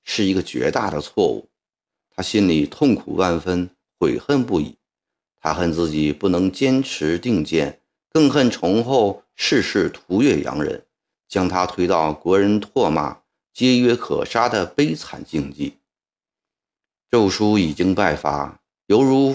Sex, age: male, 50-69